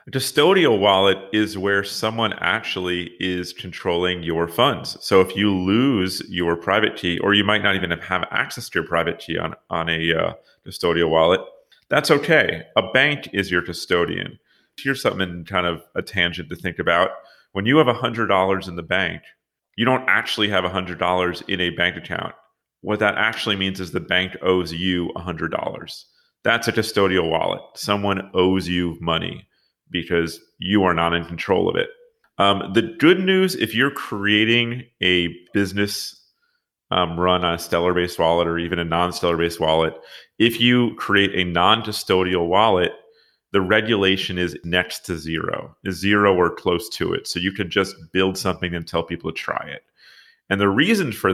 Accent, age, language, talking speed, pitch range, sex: American, 30-49, English, 170 wpm, 90-105 Hz, male